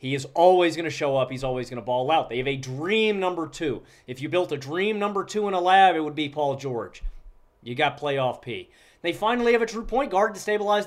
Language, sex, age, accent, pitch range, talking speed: English, male, 30-49, American, 135-175 Hz, 260 wpm